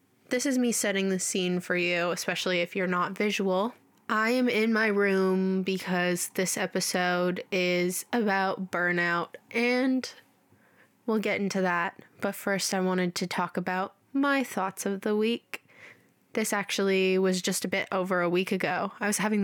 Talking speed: 165 wpm